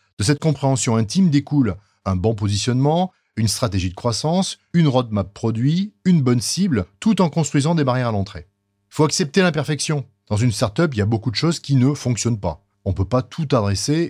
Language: French